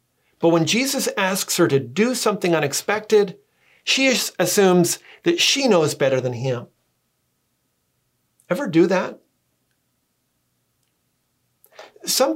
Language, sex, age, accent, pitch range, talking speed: English, male, 50-69, American, 140-200 Hz, 100 wpm